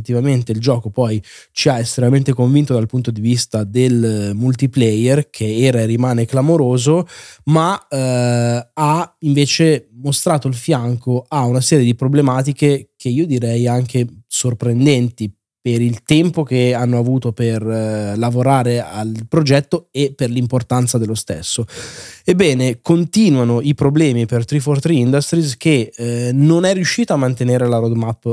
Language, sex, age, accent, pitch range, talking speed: Italian, male, 20-39, native, 120-145 Hz, 145 wpm